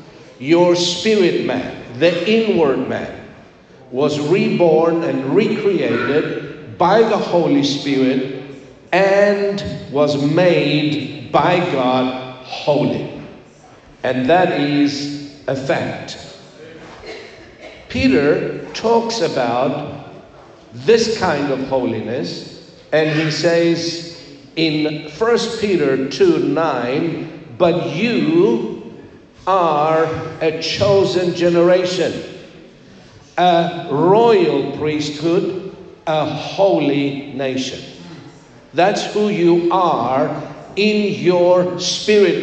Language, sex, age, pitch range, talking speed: English, male, 60-79, 145-180 Hz, 85 wpm